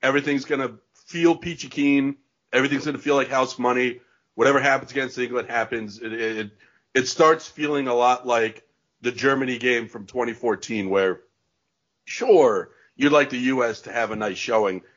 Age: 40-59